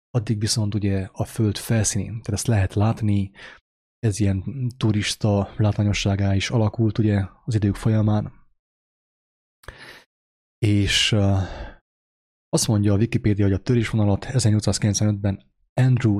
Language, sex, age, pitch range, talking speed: English, male, 20-39, 100-115 Hz, 115 wpm